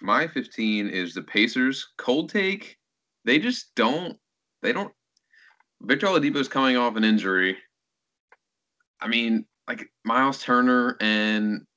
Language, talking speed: English, 120 wpm